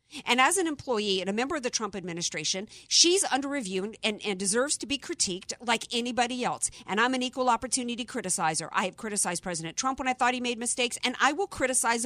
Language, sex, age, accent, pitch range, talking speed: English, female, 50-69, American, 200-270 Hz, 220 wpm